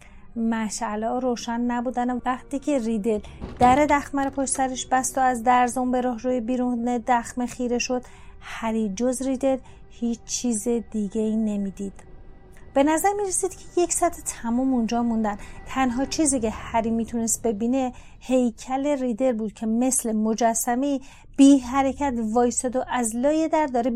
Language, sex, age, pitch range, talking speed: Persian, female, 30-49, 220-250 Hz, 145 wpm